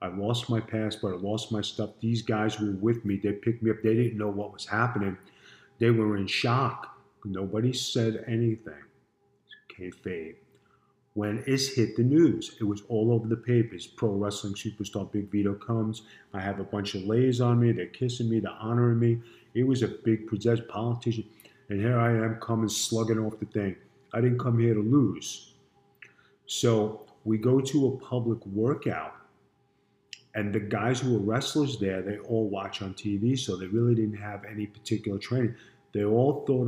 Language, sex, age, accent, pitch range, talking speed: English, male, 40-59, American, 105-120 Hz, 185 wpm